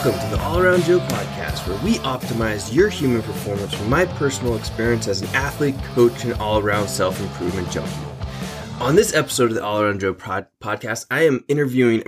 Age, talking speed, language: 20-39, 185 wpm, English